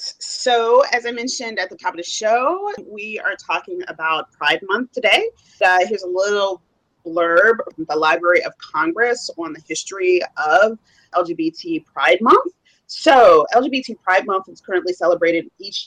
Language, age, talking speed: English, 30-49, 150 wpm